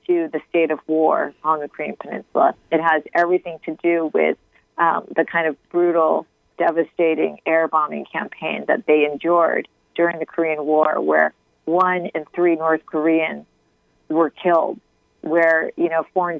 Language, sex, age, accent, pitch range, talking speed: English, female, 40-59, American, 160-190 Hz, 155 wpm